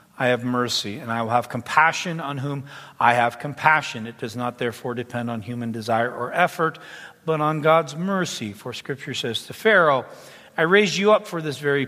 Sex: male